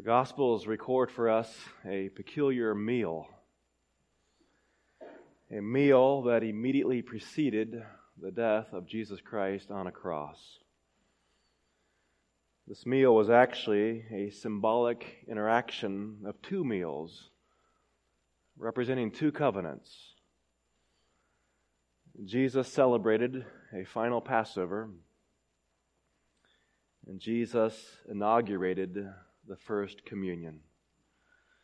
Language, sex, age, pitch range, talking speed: English, male, 30-49, 90-120 Hz, 85 wpm